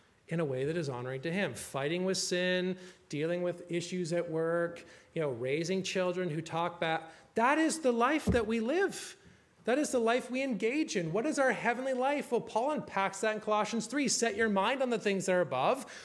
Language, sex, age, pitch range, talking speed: English, male, 30-49, 175-250 Hz, 215 wpm